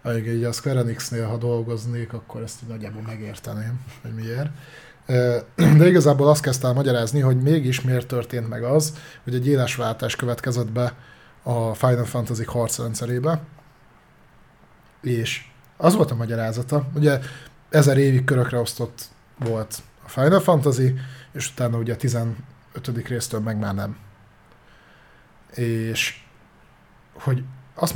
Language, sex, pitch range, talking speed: Hungarian, male, 120-150 Hz, 125 wpm